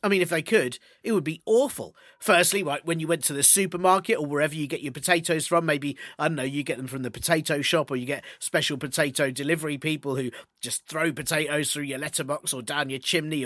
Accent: British